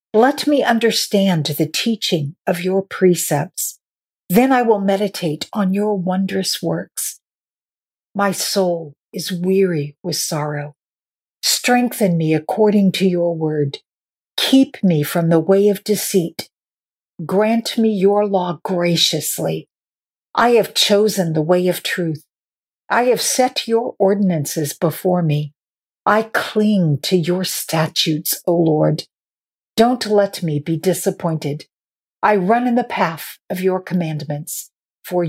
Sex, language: female, English